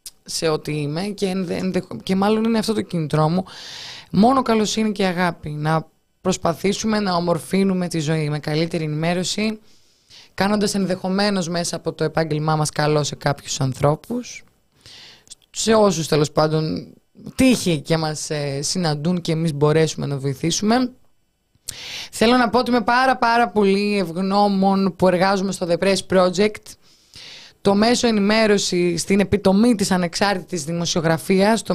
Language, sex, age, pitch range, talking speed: Greek, female, 20-39, 165-215 Hz, 140 wpm